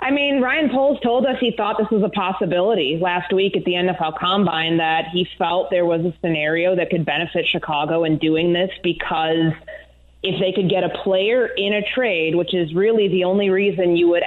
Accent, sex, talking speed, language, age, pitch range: American, female, 210 wpm, English, 20-39, 165-190 Hz